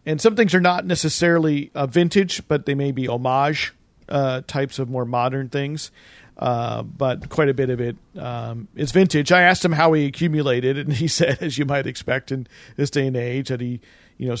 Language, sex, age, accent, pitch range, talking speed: English, male, 40-59, American, 115-145 Hz, 215 wpm